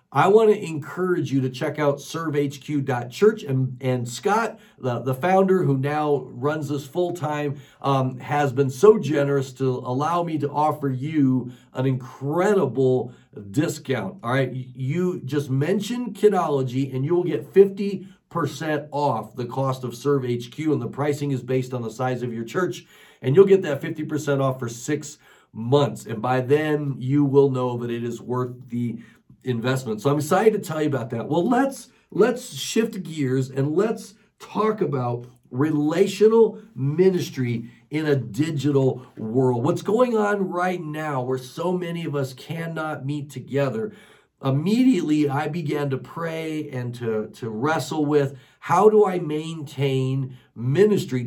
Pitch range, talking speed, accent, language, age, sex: 130-175 Hz, 155 wpm, American, English, 50-69, male